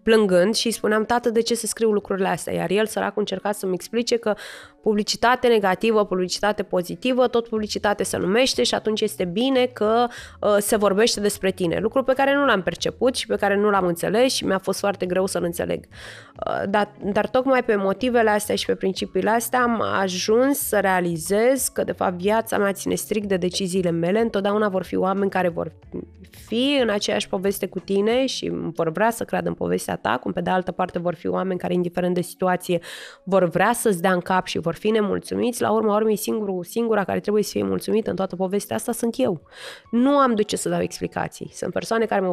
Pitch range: 190-235 Hz